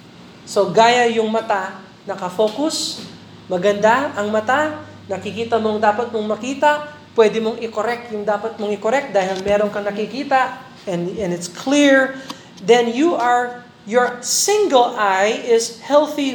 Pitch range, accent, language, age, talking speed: 195-250 Hz, native, Filipino, 20-39, 130 wpm